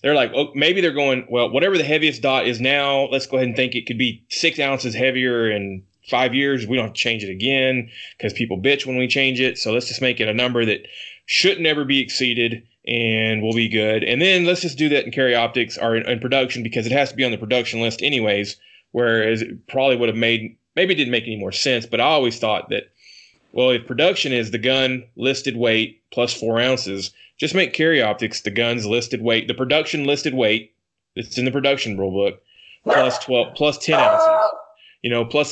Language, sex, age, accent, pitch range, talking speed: English, male, 20-39, American, 115-135 Hz, 230 wpm